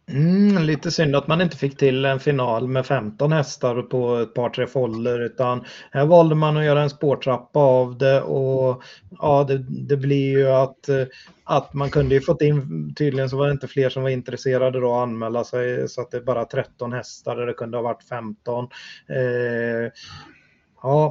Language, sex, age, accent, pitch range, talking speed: Swedish, male, 30-49, native, 125-145 Hz, 195 wpm